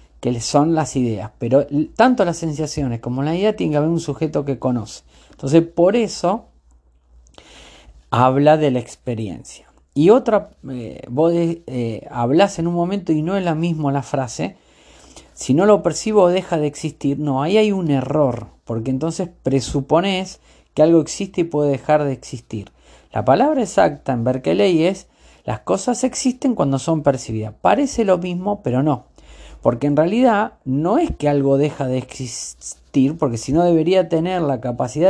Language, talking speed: English, 170 wpm